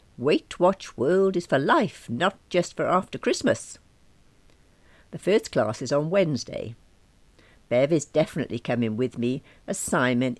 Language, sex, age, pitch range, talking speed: English, female, 60-79, 120-175 Hz, 145 wpm